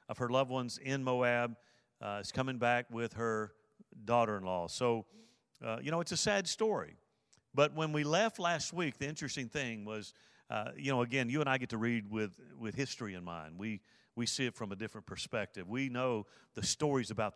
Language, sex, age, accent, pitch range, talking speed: English, male, 50-69, American, 115-150 Hz, 205 wpm